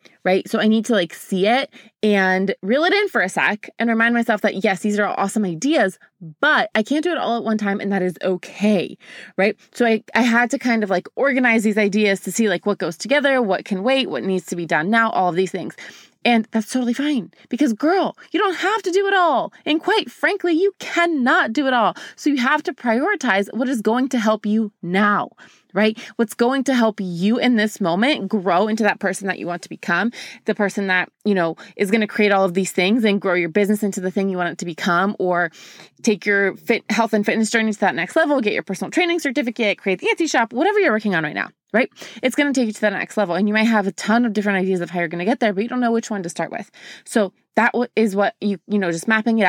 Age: 20-39